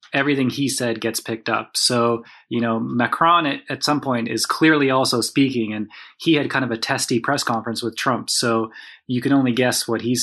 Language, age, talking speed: English, 20-39, 210 wpm